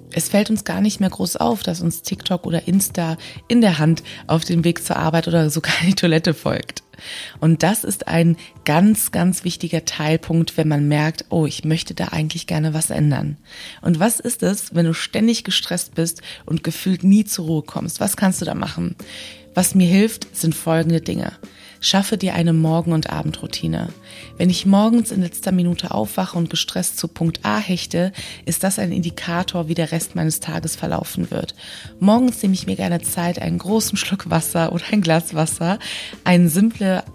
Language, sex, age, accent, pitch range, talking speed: German, female, 20-39, German, 160-190 Hz, 190 wpm